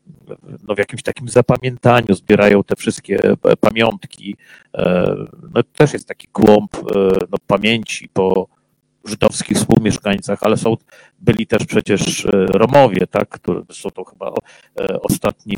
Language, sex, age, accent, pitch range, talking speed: Polish, male, 50-69, native, 105-145 Hz, 125 wpm